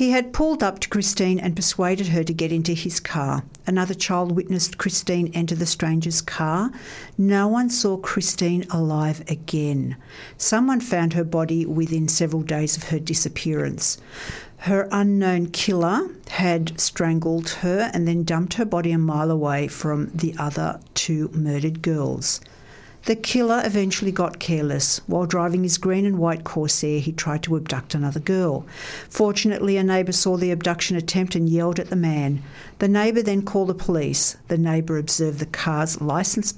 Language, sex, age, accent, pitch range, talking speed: English, female, 60-79, Australian, 160-190 Hz, 165 wpm